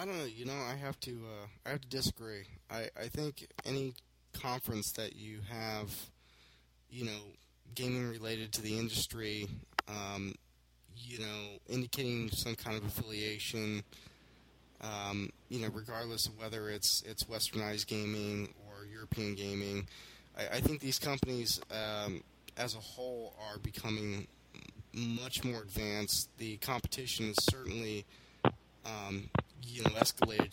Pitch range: 105-125 Hz